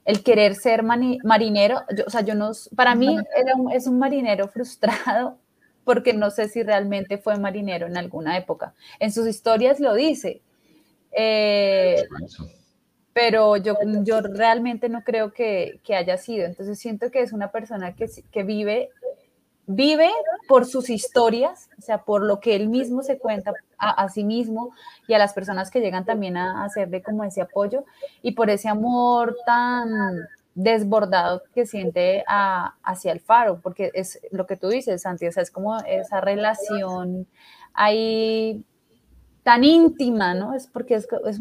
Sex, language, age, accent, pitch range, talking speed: female, Spanish, 20-39, Colombian, 200-245 Hz, 165 wpm